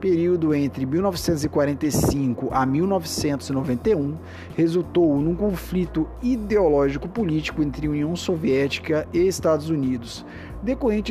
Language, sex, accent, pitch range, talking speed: Portuguese, male, Brazilian, 135-175 Hz, 95 wpm